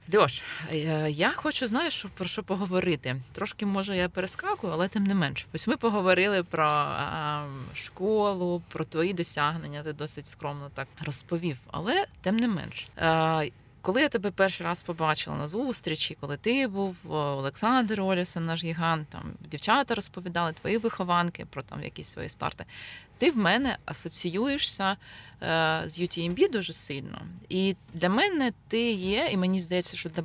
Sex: female